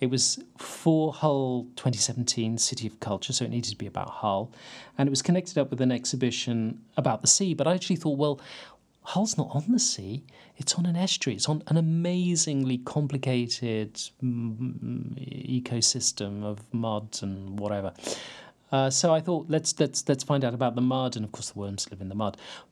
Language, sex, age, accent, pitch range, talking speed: English, male, 40-59, British, 120-150 Hz, 190 wpm